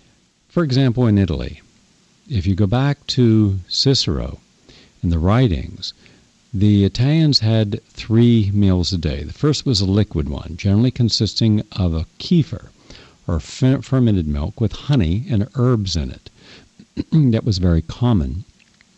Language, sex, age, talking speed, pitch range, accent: English, male, 60-79, 140 wpm, 85-115 Hz, American